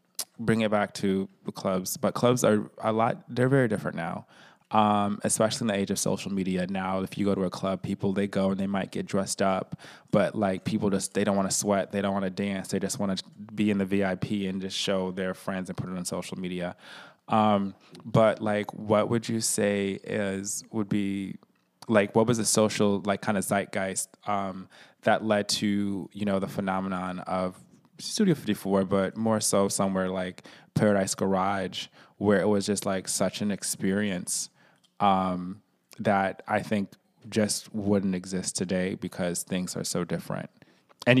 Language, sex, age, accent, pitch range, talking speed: English, male, 20-39, American, 95-105 Hz, 190 wpm